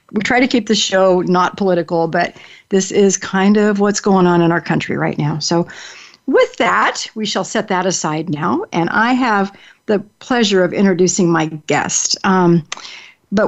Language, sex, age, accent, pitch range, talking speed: English, female, 50-69, American, 175-220 Hz, 185 wpm